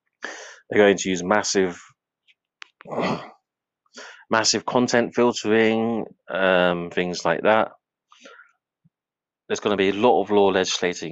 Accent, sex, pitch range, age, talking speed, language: British, male, 80-100 Hz, 30-49, 115 wpm, English